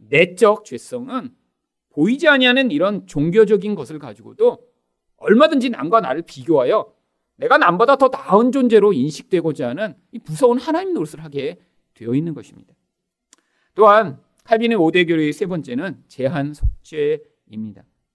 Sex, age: male, 40-59